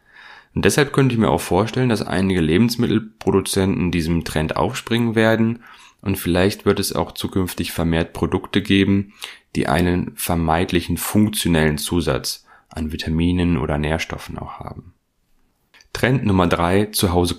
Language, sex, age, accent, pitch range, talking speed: German, male, 30-49, German, 80-100 Hz, 135 wpm